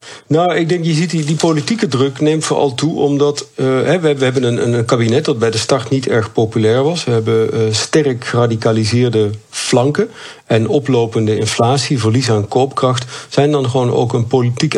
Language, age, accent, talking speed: Dutch, 40-59, Dutch, 185 wpm